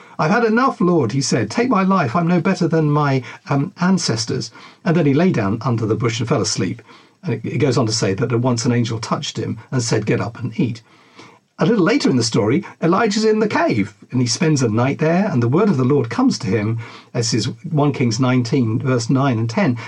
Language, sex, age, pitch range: English, male, 50-69, 120-175 Hz